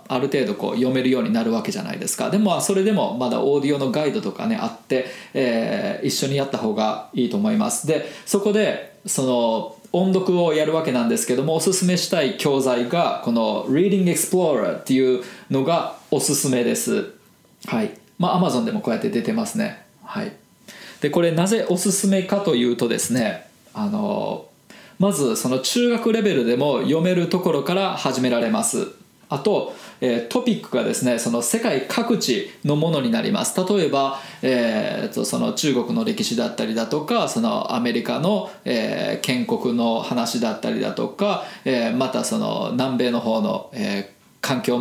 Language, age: Japanese, 20-39